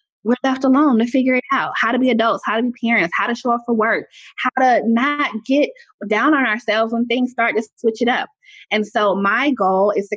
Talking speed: 240 wpm